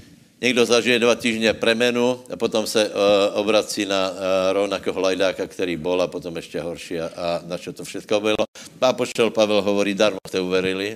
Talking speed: 185 wpm